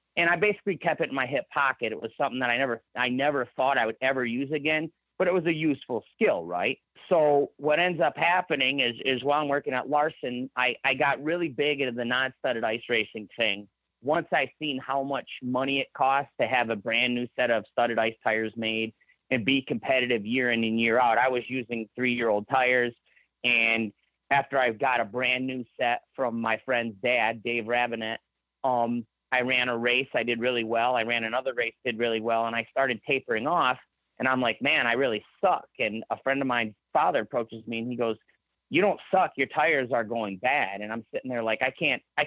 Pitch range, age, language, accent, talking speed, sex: 115-140 Hz, 30-49, English, American, 220 wpm, male